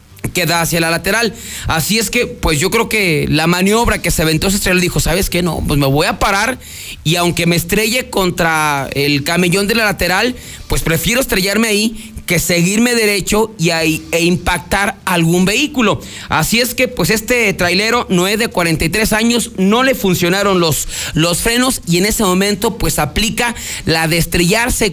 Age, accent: 40-59, Mexican